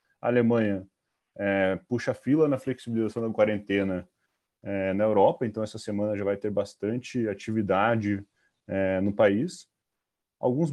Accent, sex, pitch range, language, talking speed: Brazilian, male, 105-125 Hz, Portuguese, 135 wpm